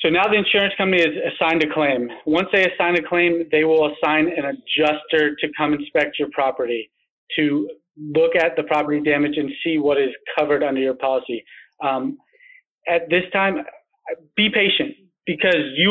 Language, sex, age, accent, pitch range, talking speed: English, male, 30-49, American, 150-175 Hz, 175 wpm